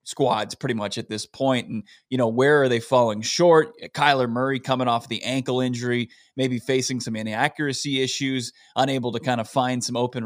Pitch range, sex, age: 120-145 Hz, male, 20-39